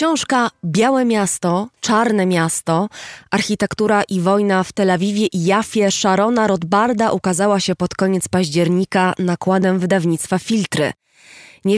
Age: 20-39